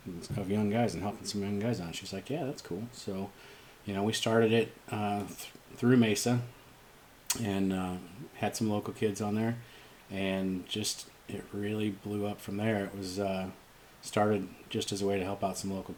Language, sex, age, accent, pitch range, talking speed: English, male, 30-49, American, 90-110 Hz, 190 wpm